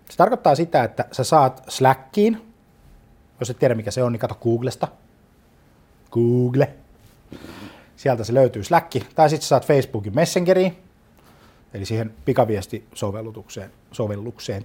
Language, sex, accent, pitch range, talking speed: Finnish, male, native, 105-140 Hz, 125 wpm